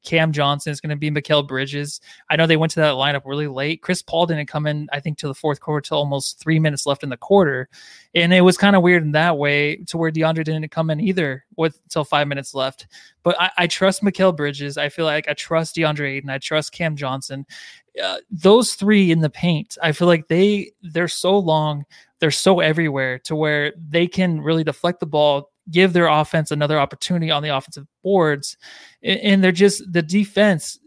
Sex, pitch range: male, 150-175 Hz